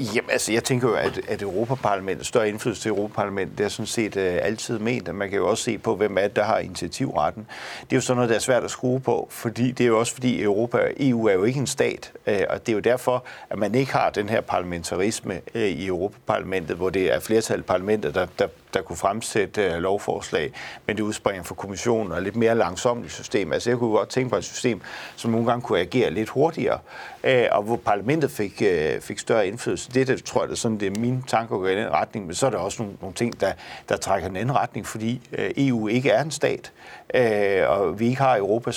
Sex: male